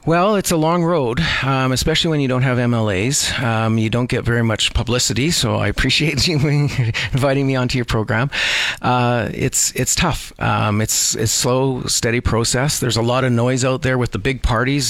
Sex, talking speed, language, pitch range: male, 195 wpm, English, 110-130 Hz